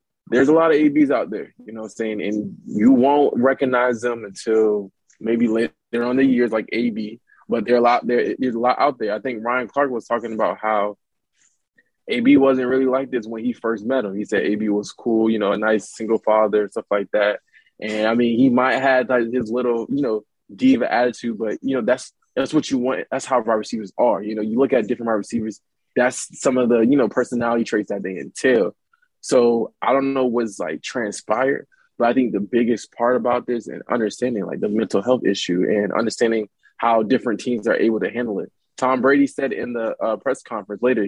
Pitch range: 110-130 Hz